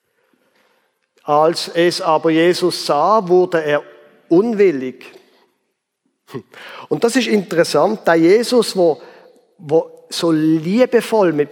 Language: German